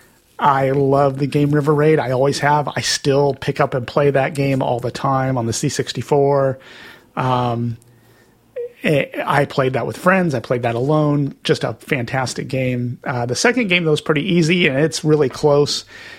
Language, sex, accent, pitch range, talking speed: English, male, American, 120-145 Hz, 180 wpm